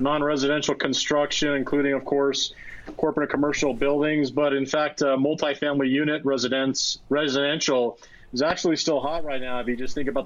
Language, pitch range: English, 135-150 Hz